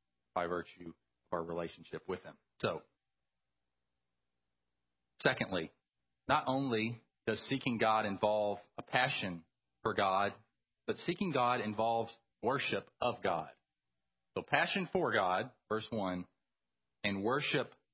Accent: American